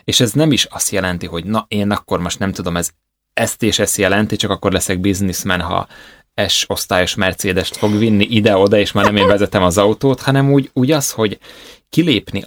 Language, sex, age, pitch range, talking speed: Hungarian, male, 20-39, 85-110 Hz, 195 wpm